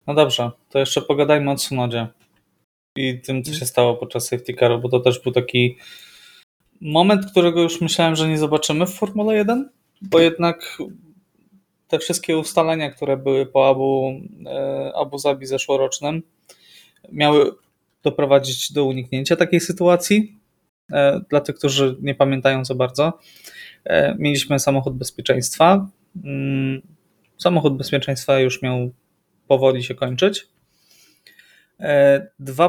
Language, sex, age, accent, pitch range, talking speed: Polish, male, 20-39, native, 130-160 Hz, 120 wpm